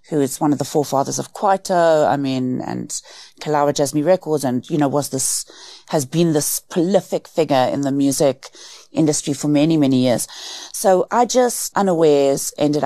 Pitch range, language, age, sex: 140-175 Hz, English, 30-49, female